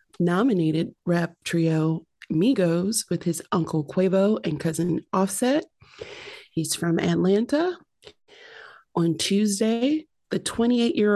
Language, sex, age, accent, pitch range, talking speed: English, female, 30-49, American, 170-210 Hz, 100 wpm